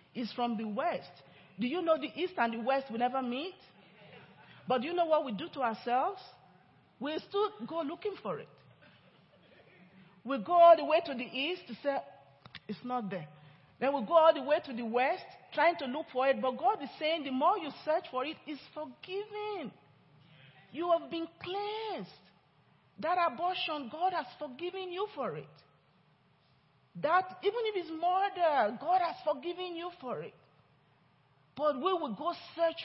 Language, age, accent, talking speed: English, 40-59, Nigerian, 175 wpm